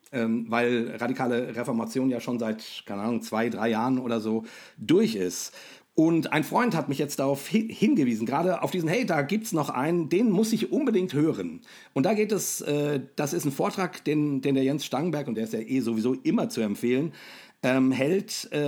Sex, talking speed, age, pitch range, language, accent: male, 195 wpm, 50-69, 125-165 Hz, German, German